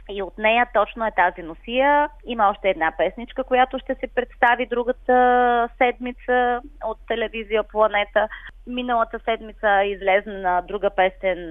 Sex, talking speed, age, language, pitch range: female, 130 wpm, 20-39, Bulgarian, 165-235 Hz